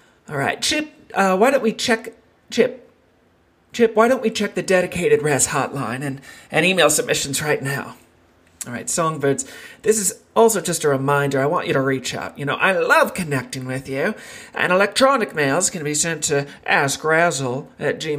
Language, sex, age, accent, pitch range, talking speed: English, male, 40-59, American, 140-205 Hz, 180 wpm